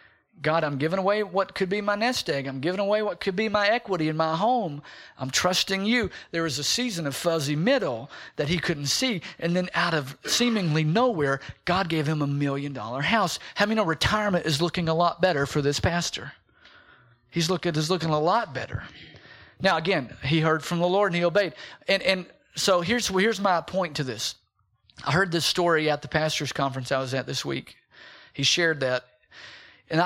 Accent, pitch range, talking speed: American, 145-195 Hz, 205 wpm